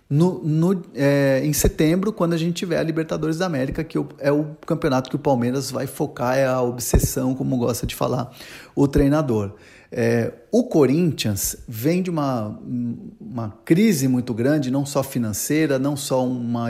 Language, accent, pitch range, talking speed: Portuguese, Brazilian, 125-170 Hz, 155 wpm